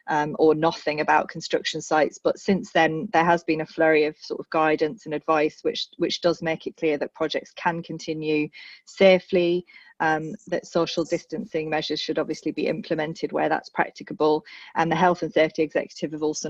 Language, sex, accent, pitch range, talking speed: English, female, British, 155-175 Hz, 185 wpm